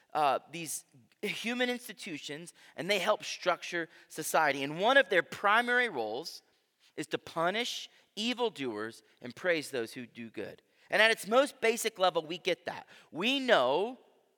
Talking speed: 150 wpm